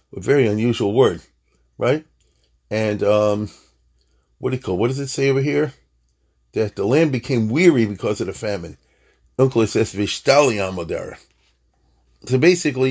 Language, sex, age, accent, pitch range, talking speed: English, male, 40-59, American, 85-130 Hz, 125 wpm